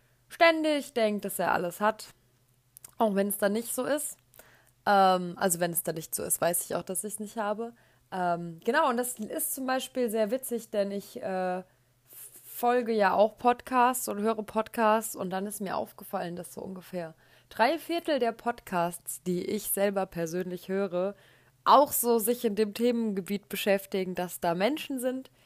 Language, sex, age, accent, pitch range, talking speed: German, female, 20-39, German, 180-235 Hz, 180 wpm